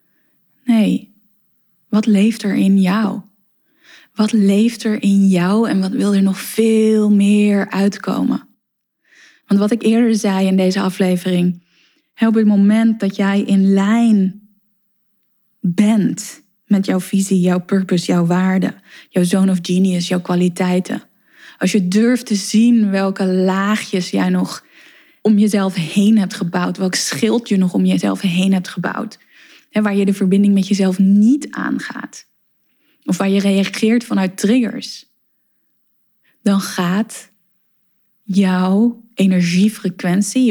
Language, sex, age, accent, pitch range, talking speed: Dutch, female, 20-39, Dutch, 185-220 Hz, 135 wpm